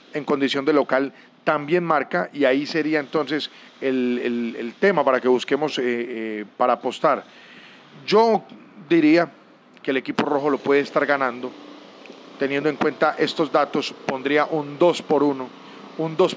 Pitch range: 140-170 Hz